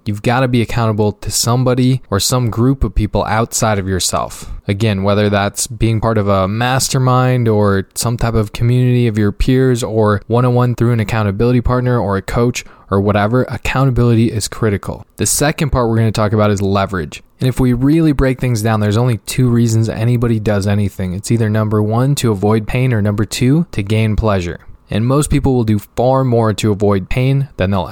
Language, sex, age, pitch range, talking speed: English, male, 20-39, 105-125 Hz, 200 wpm